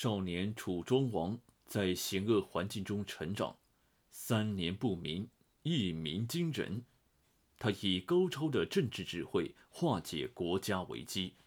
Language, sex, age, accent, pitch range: Chinese, male, 30-49, native, 90-120 Hz